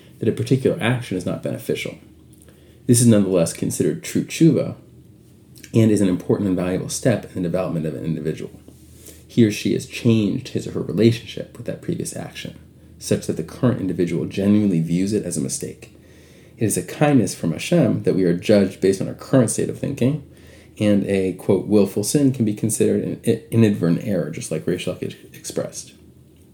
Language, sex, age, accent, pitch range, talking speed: English, male, 30-49, American, 90-115 Hz, 185 wpm